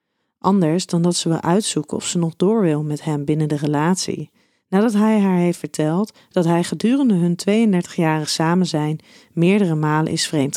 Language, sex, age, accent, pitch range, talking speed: Dutch, female, 30-49, Dutch, 155-205 Hz, 180 wpm